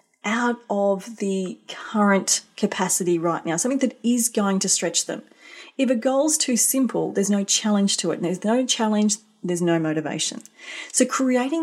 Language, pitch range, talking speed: English, 185-240 Hz, 165 wpm